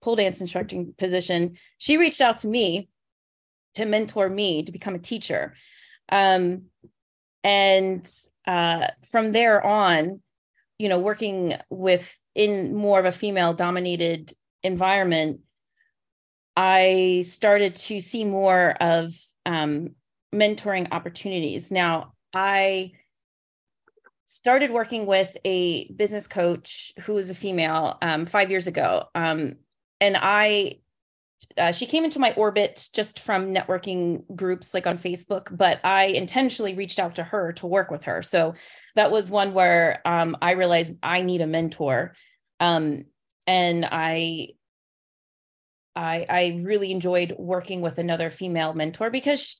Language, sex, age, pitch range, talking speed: English, female, 30-49, 170-210 Hz, 130 wpm